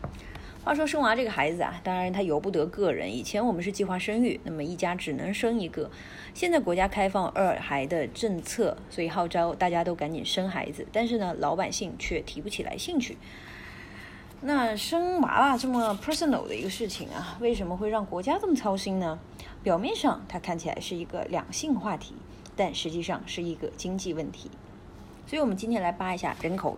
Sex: female